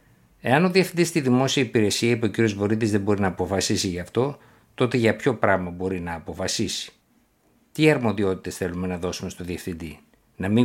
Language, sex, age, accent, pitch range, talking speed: Greek, male, 60-79, native, 95-120 Hz, 180 wpm